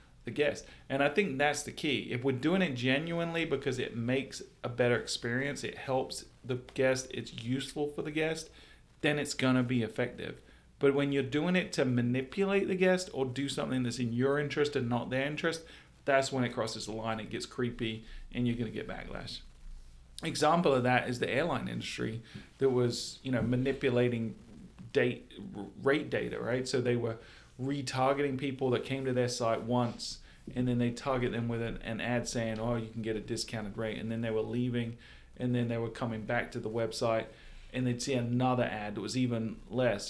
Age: 40-59